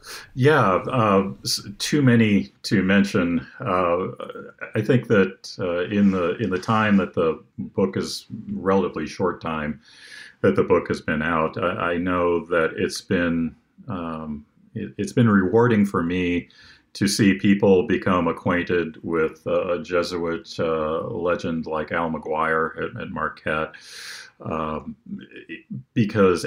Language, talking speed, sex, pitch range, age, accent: English, 135 wpm, male, 85-105 Hz, 40-59, American